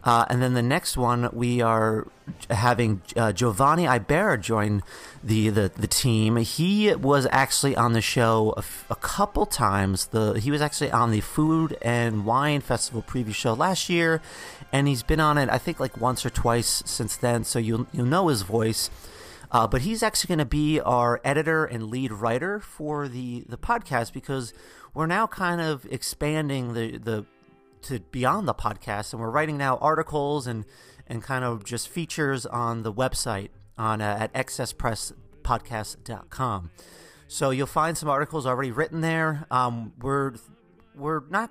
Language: English